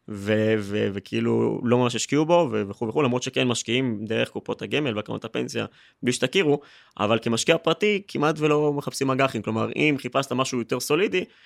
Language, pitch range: Hebrew, 110-130 Hz